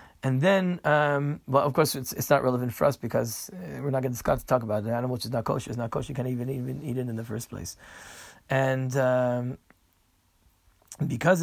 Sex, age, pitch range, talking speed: male, 30-49, 130-160 Hz, 230 wpm